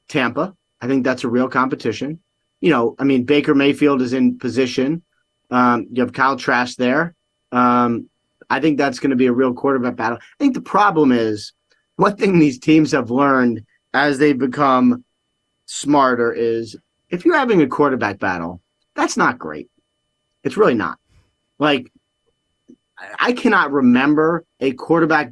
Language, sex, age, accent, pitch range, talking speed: English, male, 30-49, American, 125-155 Hz, 160 wpm